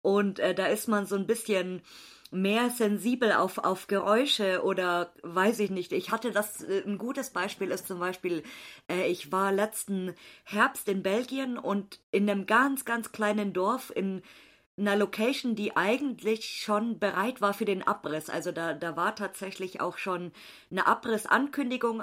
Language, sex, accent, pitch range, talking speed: German, female, German, 190-230 Hz, 165 wpm